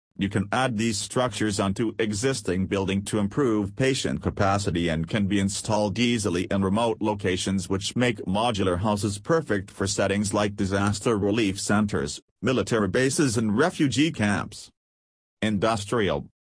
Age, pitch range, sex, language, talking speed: 40-59, 95-115 Hz, male, English, 135 wpm